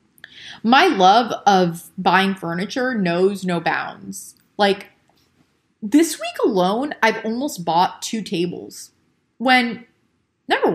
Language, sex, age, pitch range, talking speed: English, female, 20-39, 175-230 Hz, 105 wpm